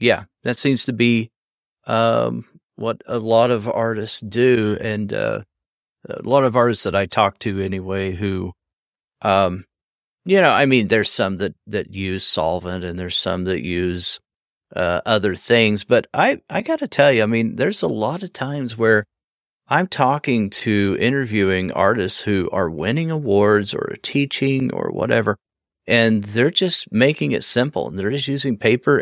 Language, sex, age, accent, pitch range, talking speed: English, male, 40-59, American, 95-135 Hz, 170 wpm